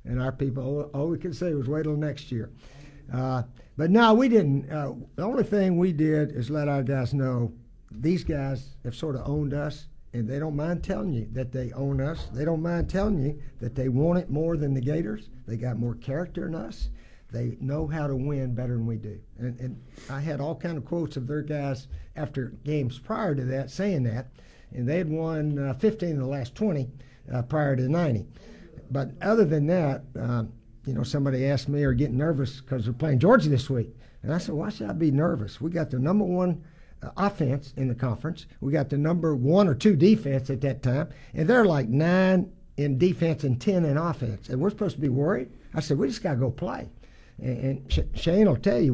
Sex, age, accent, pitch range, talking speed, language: male, 60-79, American, 130-165 Hz, 225 wpm, English